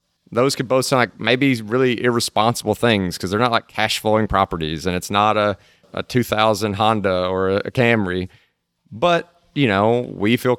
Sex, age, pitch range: male, 30-49, 95-120 Hz